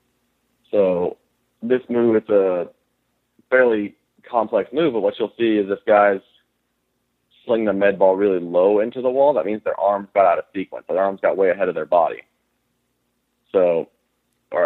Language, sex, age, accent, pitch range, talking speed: English, male, 30-49, American, 100-140 Hz, 170 wpm